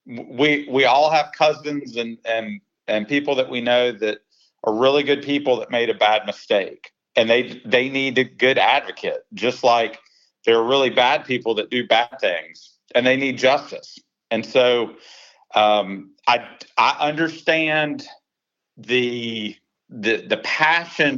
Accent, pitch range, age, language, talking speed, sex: American, 110-140 Hz, 40-59, English, 155 wpm, male